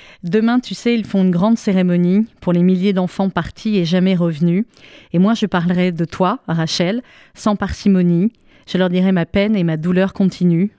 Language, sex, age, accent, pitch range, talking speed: French, female, 30-49, French, 170-190 Hz, 200 wpm